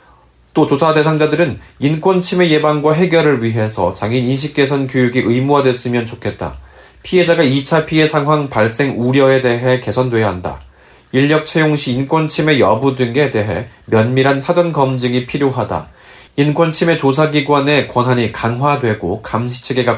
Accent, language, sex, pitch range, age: native, Korean, male, 115-150 Hz, 30-49